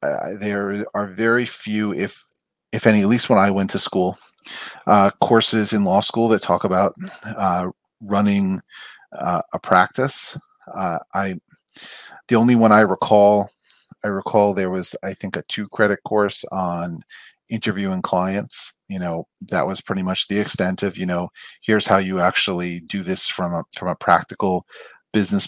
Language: English